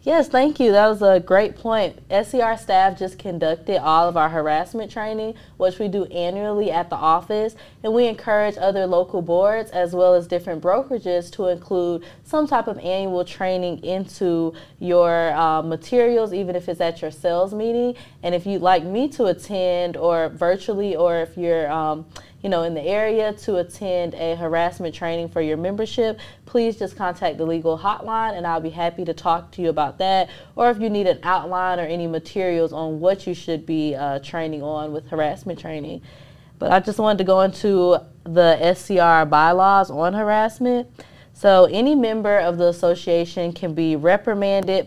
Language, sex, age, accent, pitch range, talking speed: English, female, 20-39, American, 165-200 Hz, 180 wpm